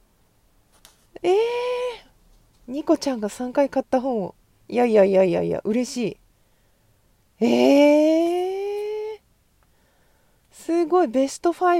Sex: female